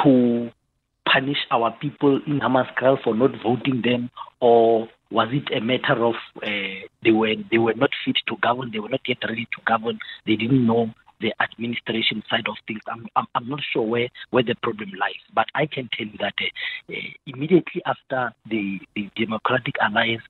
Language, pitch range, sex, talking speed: English, 115-145 Hz, male, 190 wpm